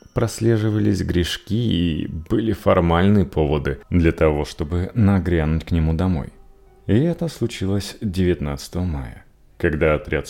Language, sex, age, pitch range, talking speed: Russian, male, 30-49, 80-130 Hz, 115 wpm